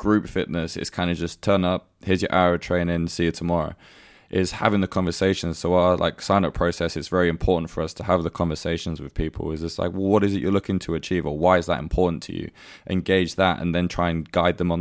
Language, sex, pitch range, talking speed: English, male, 80-90 Hz, 255 wpm